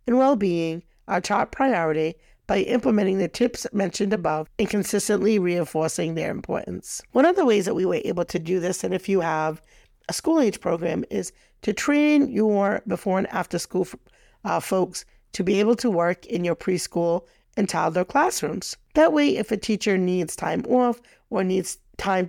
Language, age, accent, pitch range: English, 50-69, American, 175-220 Hz